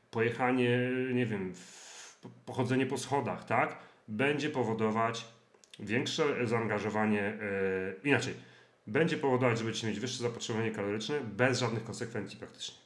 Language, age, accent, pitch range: Polish, 40-59, native, 105-130 Hz